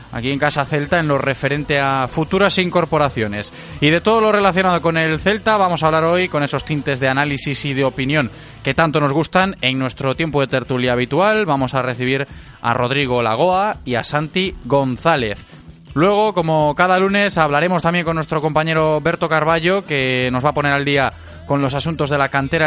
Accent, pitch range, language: Spanish, 135-165 Hz, Spanish